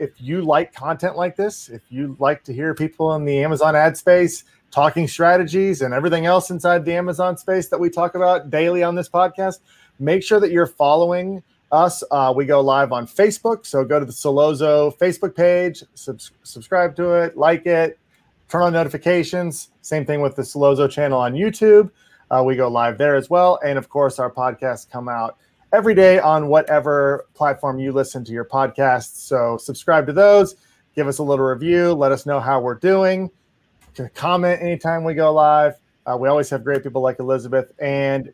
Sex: male